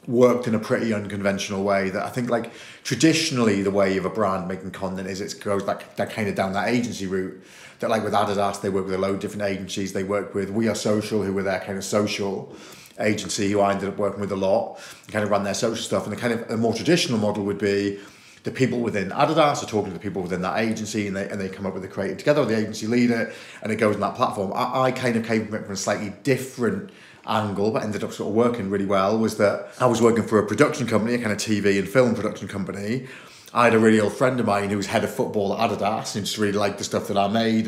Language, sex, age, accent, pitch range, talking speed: English, male, 30-49, British, 100-115 Hz, 270 wpm